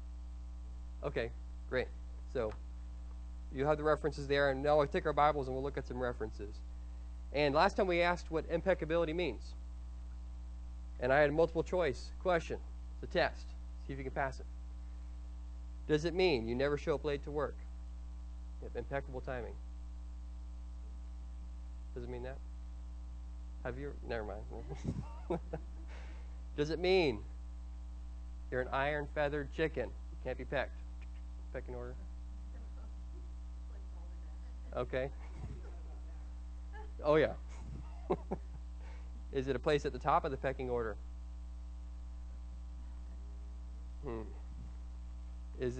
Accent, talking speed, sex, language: American, 125 wpm, male, English